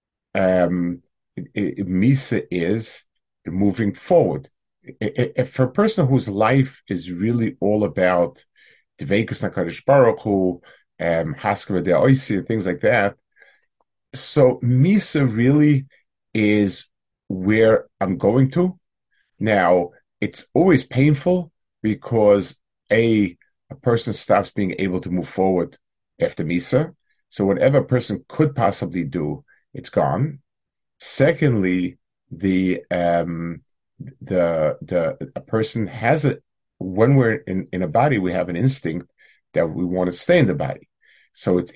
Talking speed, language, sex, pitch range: 135 wpm, English, male, 95-135 Hz